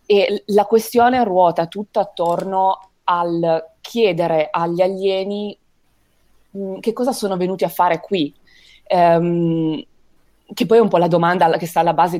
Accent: native